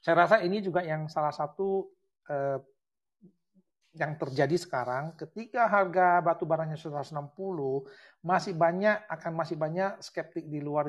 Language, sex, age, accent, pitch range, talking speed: Indonesian, male, 40-59, native, 140-185 Hz, 130 wpm